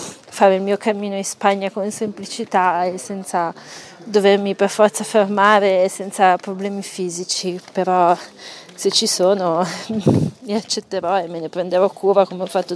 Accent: native